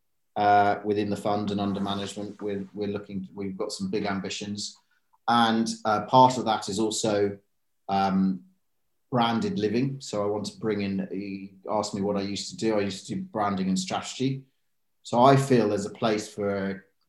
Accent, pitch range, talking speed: British, 95-115 Hz, 185 wpm